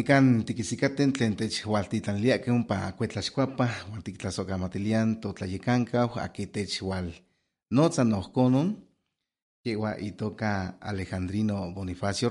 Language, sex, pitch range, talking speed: Spanish, male, 100-125 Hz, 75 wpm